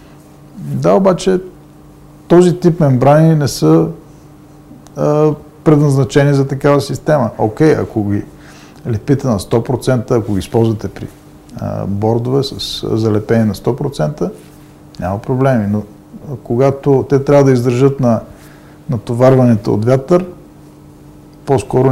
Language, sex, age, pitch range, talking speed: English, male, 50-69, 120-150 Hz, 115 wpm